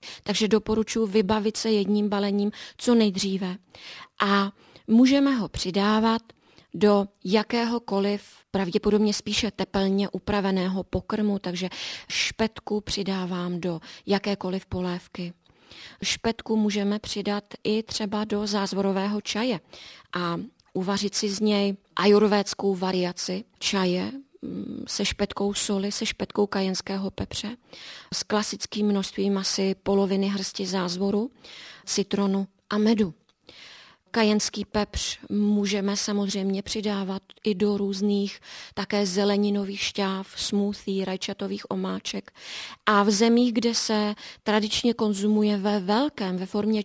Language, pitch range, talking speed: Czech, 195-220 Hz, 105 wpm